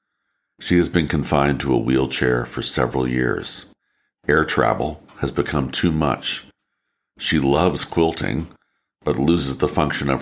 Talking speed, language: 140 wpm, English